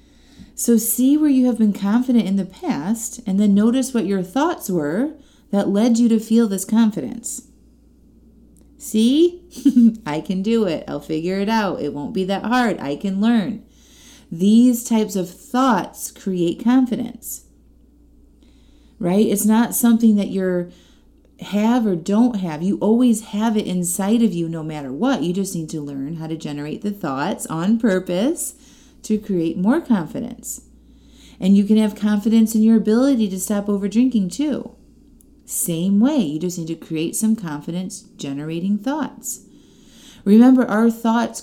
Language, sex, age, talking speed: English, female, 30-49, 160 wpm